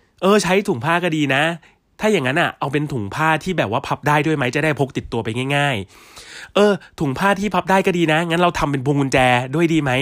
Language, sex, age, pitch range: Thai, male, 20-39, 110-155 Hz